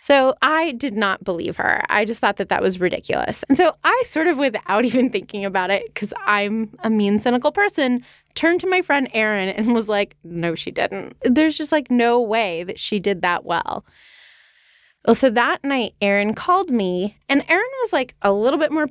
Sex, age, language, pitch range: female, 20-39, English, 205-280 Hz